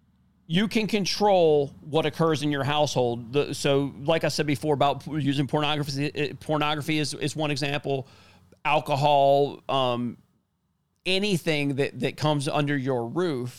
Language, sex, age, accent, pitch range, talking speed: English, male, 40-59, American, 130-155 Hz, 130 wpm